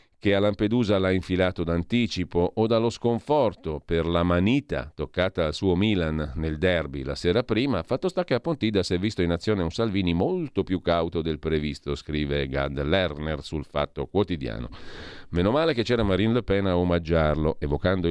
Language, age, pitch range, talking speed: Italian, 50-69, 80-100 Hz, 180 wpm